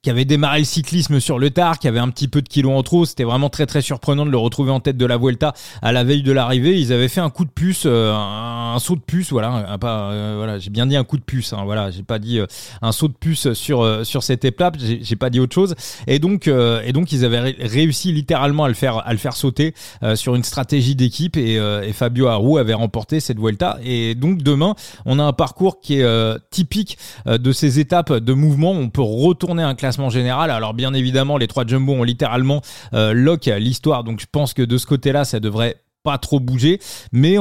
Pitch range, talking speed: 120-160 Hz, 240 wpm